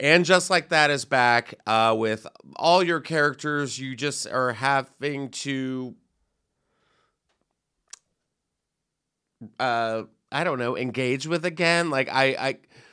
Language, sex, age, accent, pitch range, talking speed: English, male, 30-49, American, 110-160 Hz, 120 wpm